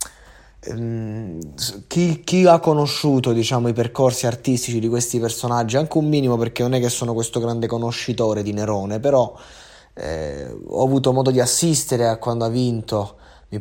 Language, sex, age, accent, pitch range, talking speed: Italian, male, 20-39, native, 115-135 Hz, 160 wpm